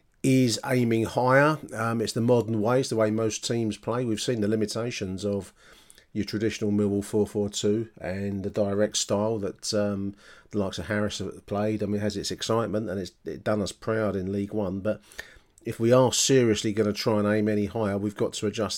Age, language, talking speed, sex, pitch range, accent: 40-59, English, 210 wpm, male, 95-110 Hz, British